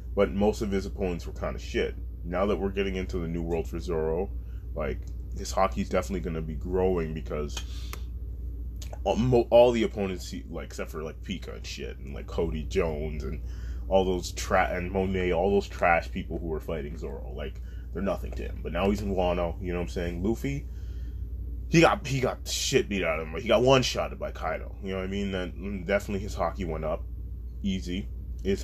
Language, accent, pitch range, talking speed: English, American, 70-95 Hz, 215 wpm